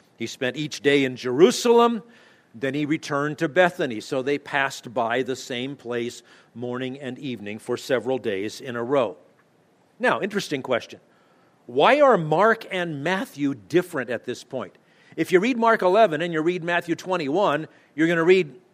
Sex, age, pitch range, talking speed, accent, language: male, 50-69, 140-185 Hz, 170 wpm, American, English